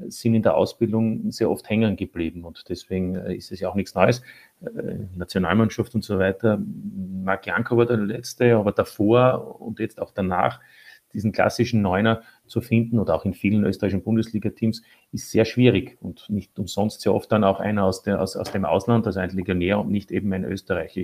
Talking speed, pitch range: 185 wpm, 105-120 Hz